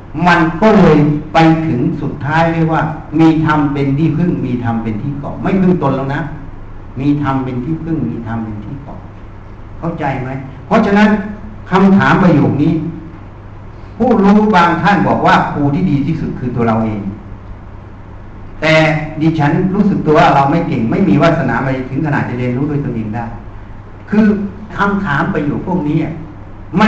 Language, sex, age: Thai, male, 60-79